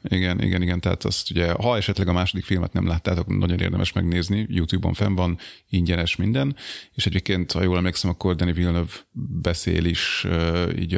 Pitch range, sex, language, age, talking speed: 85-105 Hz, male, Hungarian, 30-49, 180 wpm